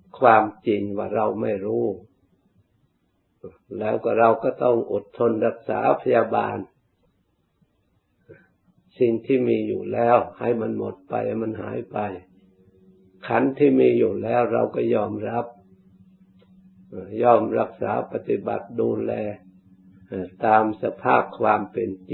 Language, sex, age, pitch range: Thai, male, 60-79, 95-120 Hz